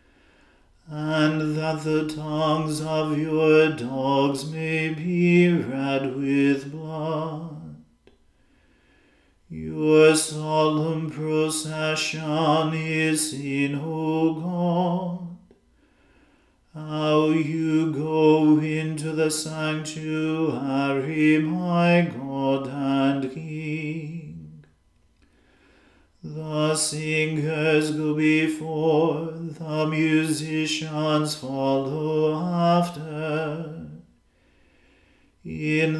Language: English